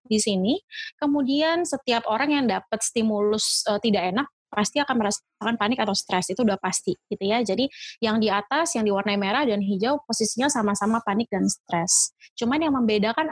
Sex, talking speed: female, 175 wpm